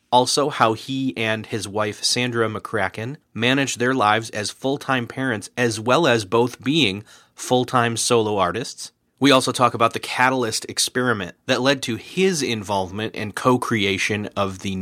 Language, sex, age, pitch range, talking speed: English, male, 30-49, 100-120 Hz, 155 wpm